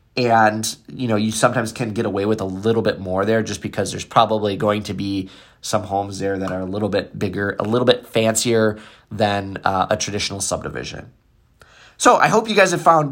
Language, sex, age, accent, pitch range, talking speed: English, male, 20-39, American, 110-145 Hz, 210 wpm